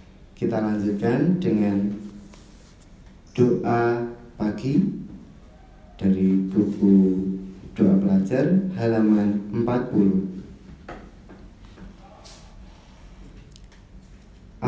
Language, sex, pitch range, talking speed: Indonesian, male, 105-125 Hz, 45 wpm